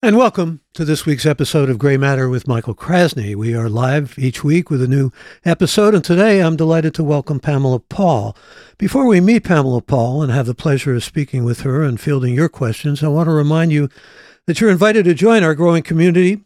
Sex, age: male, 60-79